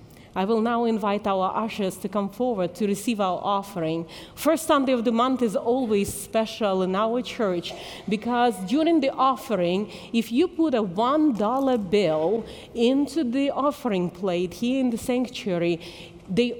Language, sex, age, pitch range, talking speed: English, female, 40-59, 185-245 Hz, 155 wpm